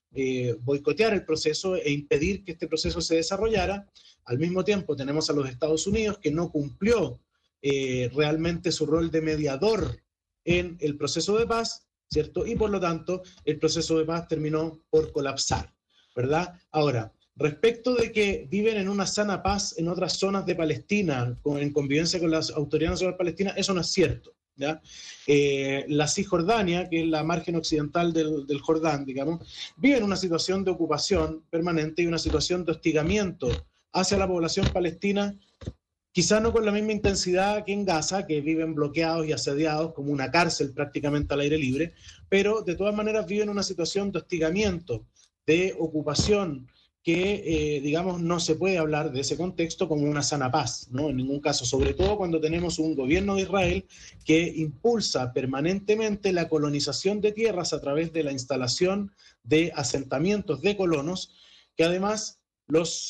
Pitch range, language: 150-190 Hz, Spanish